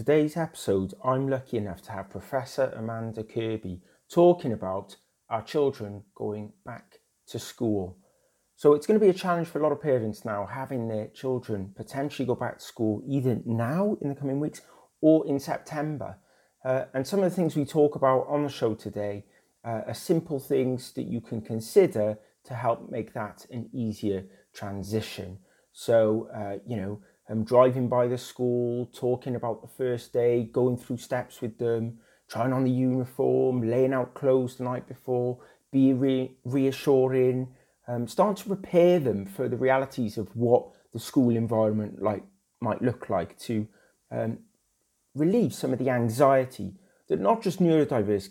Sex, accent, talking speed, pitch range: male, British, 170 wpm, 110-135 Hz